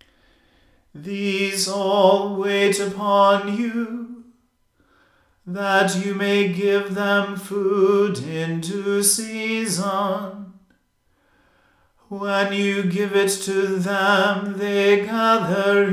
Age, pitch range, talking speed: 40-59, 195-200 Hz, 80 wpm